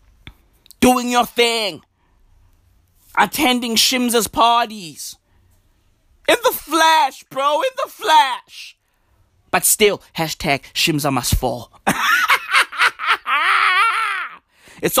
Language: English